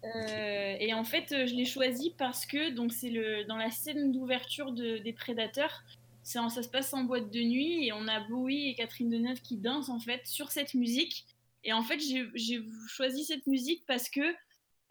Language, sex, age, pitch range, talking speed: French, female, 20-39, 225-265 Hz, 210 wpm